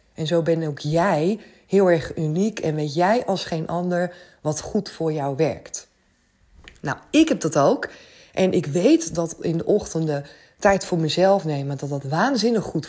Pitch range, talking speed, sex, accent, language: 150-210 Hz, 180 wpm, female, Dutch, Dutch